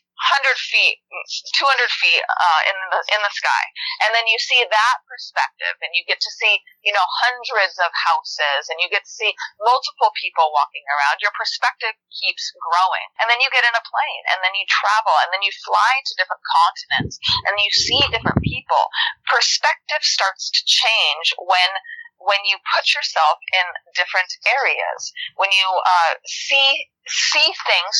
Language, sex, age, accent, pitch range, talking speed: English, female, 30-49, American, 180-260 Hz, 170 wpm